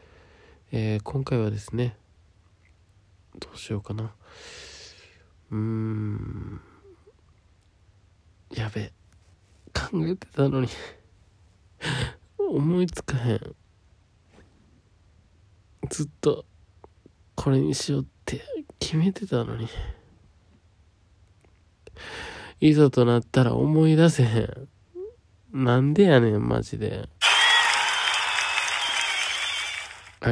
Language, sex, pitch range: Japanese, male, 95-130 Hz